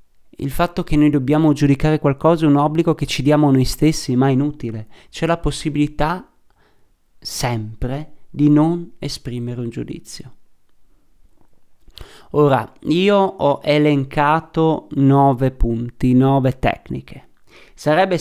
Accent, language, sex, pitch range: native, Italian, male, 130-155 Hz